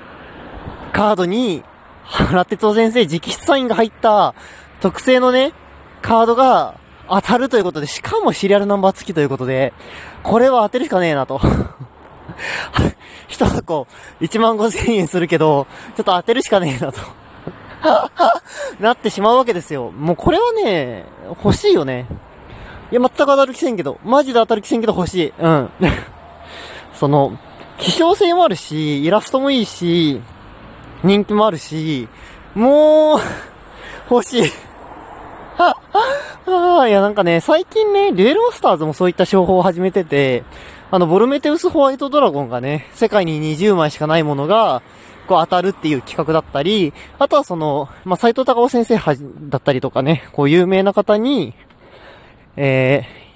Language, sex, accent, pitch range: Japanese, male, native, 150-245 Hz